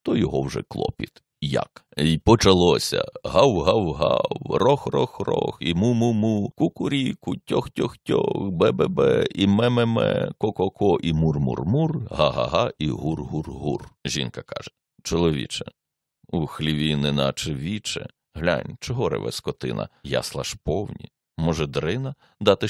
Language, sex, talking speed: Ukrainian, male, 110 wpm